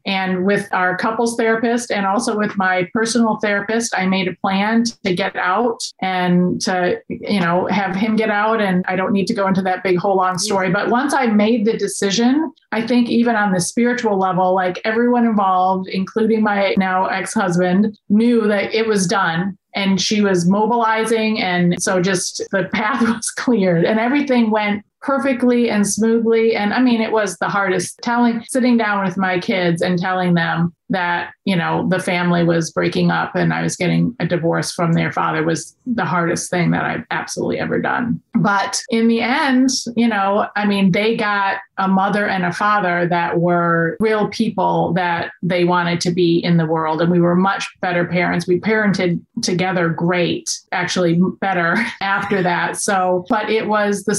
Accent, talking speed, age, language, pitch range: American, 185 wpm, 30-49, English, 180-225 Hz